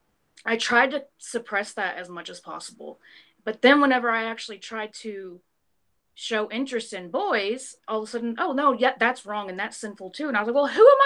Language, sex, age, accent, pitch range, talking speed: English, female, 30-49, American, 200-265 Hz, 220 wpm